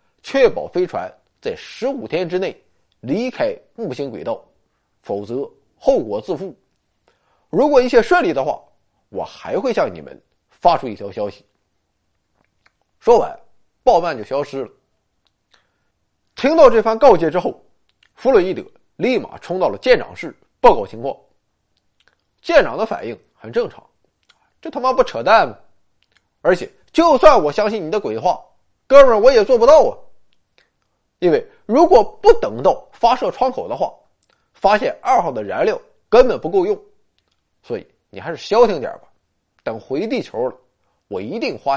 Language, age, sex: Chinese, 30-49, male